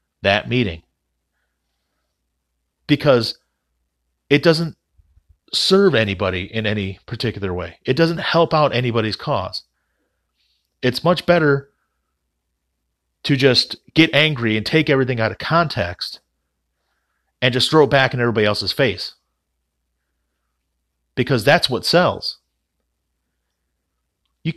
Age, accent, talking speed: 30-49, American, 105 wpm